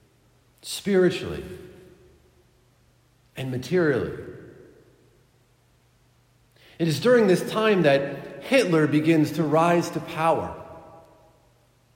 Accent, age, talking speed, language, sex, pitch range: American, 50-69, 75 wpm, English, male, 120-170 Hz